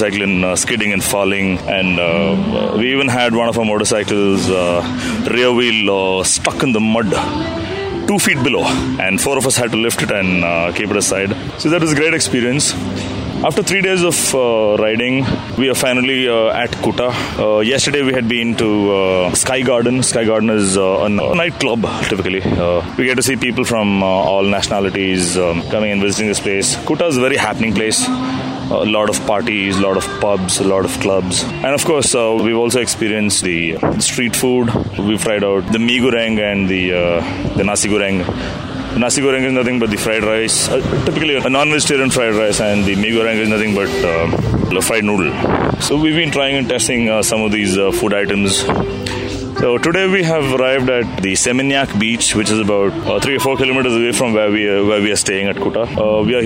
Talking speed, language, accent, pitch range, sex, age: 210 wpm, English, Indian, 100-125 Hz, male, 30-49